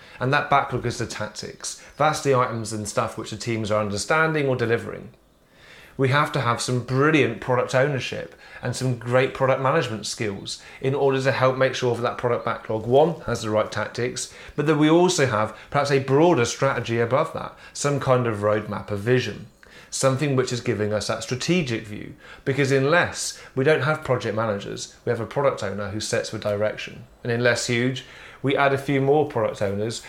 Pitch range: 110-135 Hz